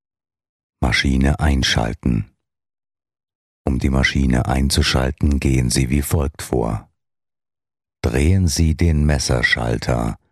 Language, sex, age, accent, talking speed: German, male, 50-69, German, 85 wpm